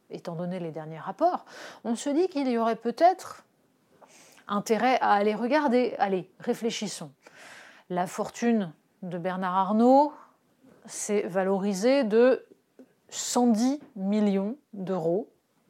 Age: 30-49